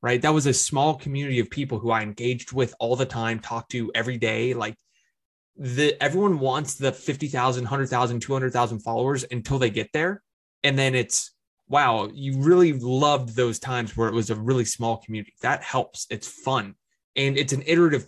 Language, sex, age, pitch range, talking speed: English, male, 20-39, 115-140 Hz, 185 wpm